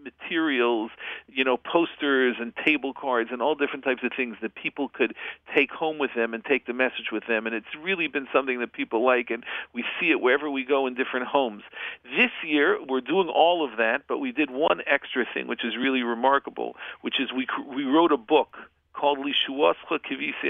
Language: English